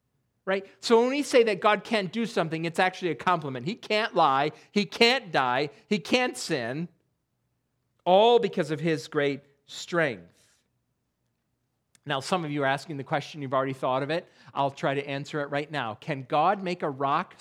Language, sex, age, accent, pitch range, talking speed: English, male, 40-59, American, 140-210 Hz, 185 wpm